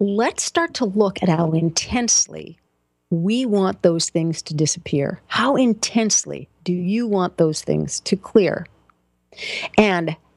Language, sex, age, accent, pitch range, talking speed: English, female, 50-69, American, 160-210 Hz, 135 wpm